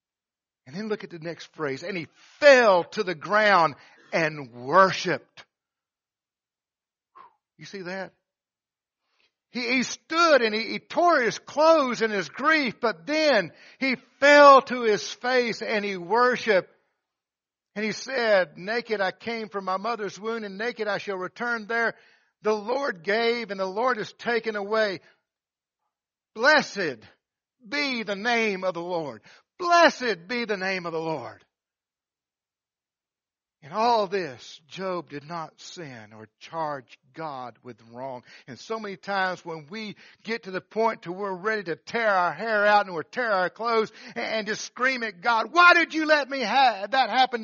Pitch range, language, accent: 170-240 Hz, English, American